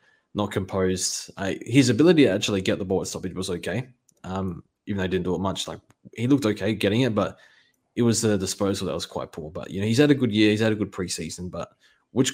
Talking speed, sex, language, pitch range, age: 255 wpm, male, English, 95-110 Hz, 20-39